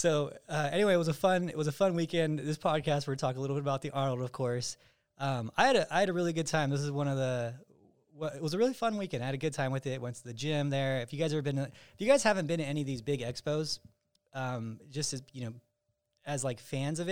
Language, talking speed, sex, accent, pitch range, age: English, 295 wpm, male, American, 120-150 Hz, 20-39